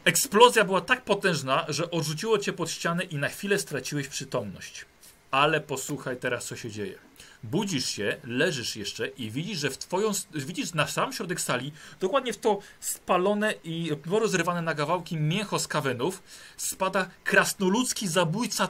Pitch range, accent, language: 135-185 Hz, native, Polish